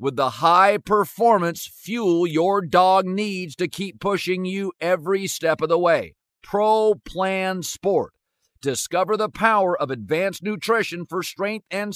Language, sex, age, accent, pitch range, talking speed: English, male, 50-69, American, 160-210 Hz, 140 wpm